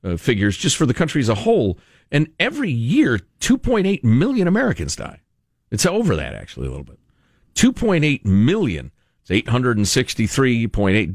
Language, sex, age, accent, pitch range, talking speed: English, male, 50-69, American, 90-135 Hz, 140 wpm